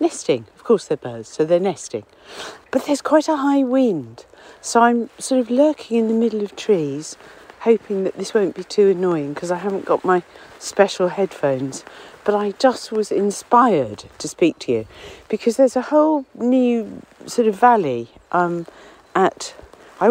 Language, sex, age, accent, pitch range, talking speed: English, female, 50-69, British, 175-255 Hz, 175 wpm